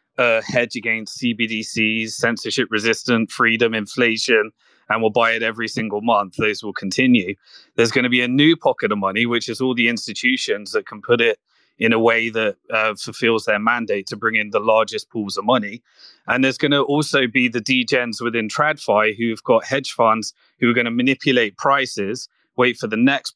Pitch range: 110-125 Hz